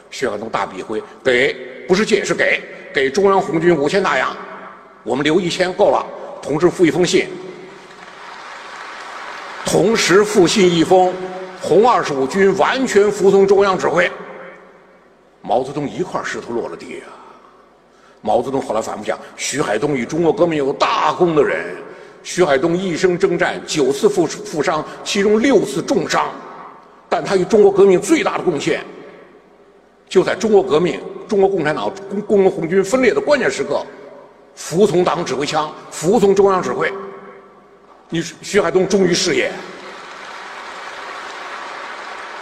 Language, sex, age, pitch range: Chinese, male, 50-69, 180-210 Hz